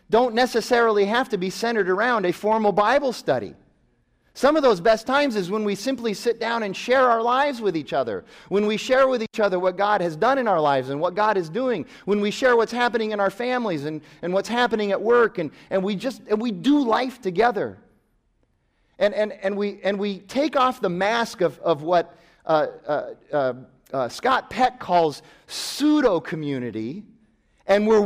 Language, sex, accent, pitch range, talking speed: English, male, American, 180-240 Hz, 200 wpm